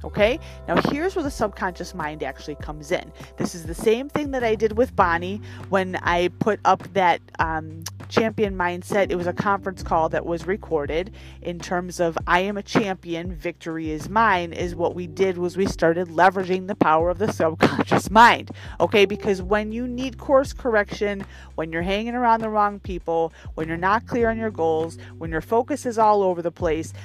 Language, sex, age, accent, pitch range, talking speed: English, female, 30-49, American, 175-240 Hz, 195 wpm